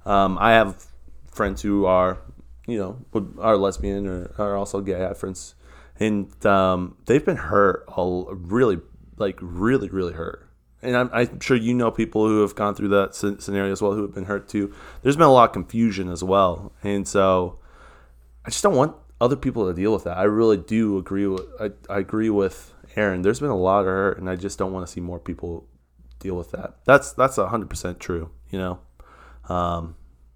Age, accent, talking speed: 20-39, American, 210 wpm